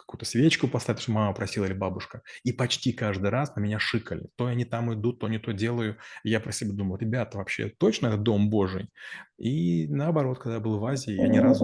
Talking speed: 220 wpm